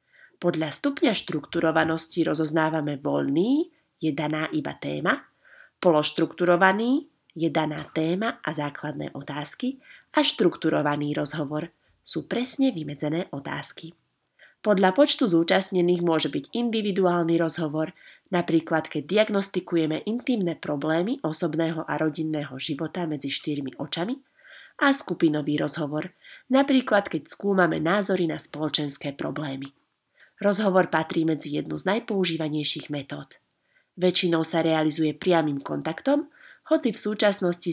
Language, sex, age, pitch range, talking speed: Slovak, female, 30-49, 155-205 Hz, 105 wpm